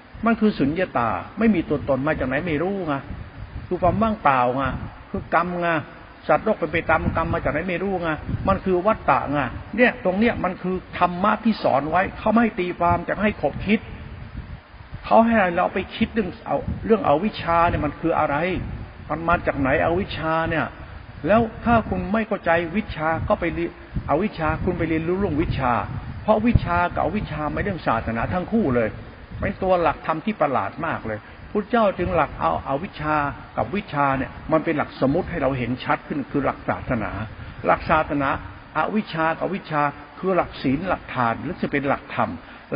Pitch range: 130-185 Hz